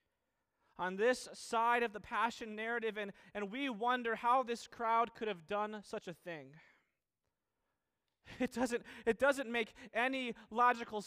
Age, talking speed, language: 20-39, 140 wpm, English